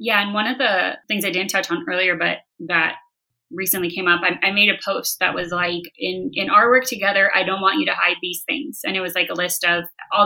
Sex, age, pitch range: female, 20-39, 170-195 Hz